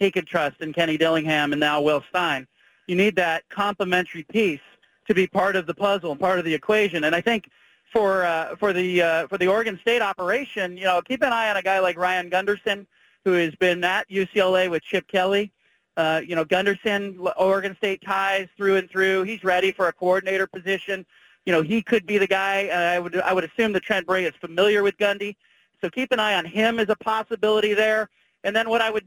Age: 40-59